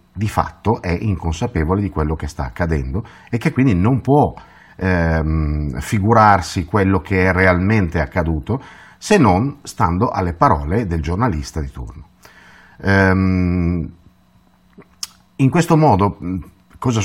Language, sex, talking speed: Italian, male, 120 wpm